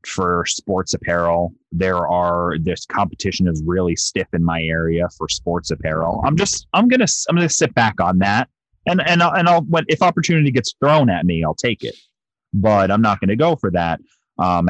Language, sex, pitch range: English, male, 80-100 Hz